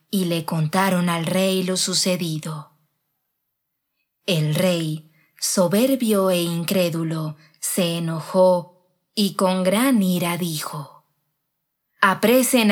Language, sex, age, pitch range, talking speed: Spanish, female, 20-39, 155-195 Hz, 95 wpm